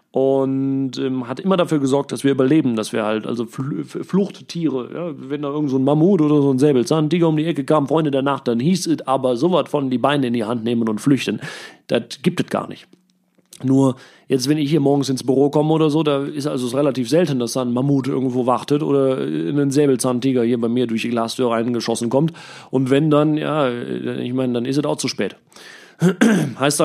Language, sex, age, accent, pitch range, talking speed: German, male, 30-49, German, 125-155 Hz, 220 wpm